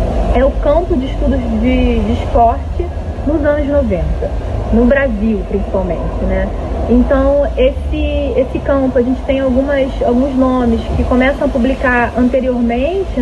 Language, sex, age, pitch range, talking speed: Portuguese, female, 20-39, 230-280 Hz, 135 wpm